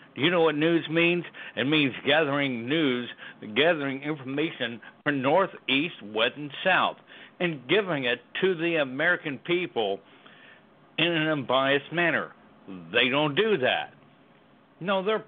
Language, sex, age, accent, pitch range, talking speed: English, male, 60-79, American, 120-160 Hz, 135 wpm